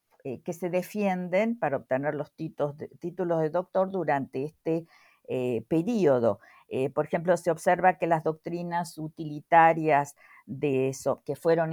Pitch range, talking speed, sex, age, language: 150-185 Hz, 135 wpm, female, 50-69, Spanish